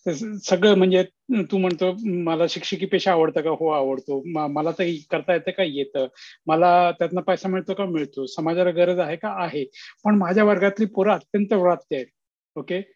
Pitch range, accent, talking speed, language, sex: 160-195 Hz, native, 165 wpm, Marathi, male